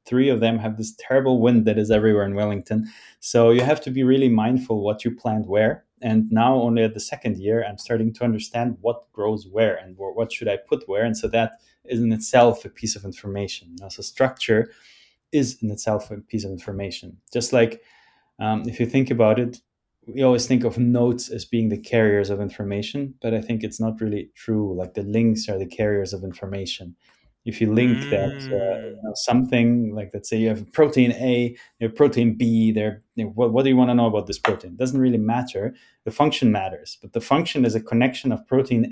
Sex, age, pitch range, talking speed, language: male, 20-39, 110-125 Hz, 220 wpm, English